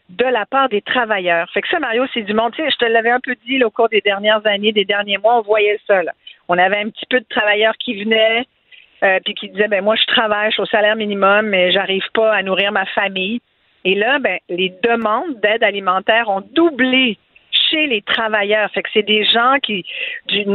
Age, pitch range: 50-69, 195-235 Hz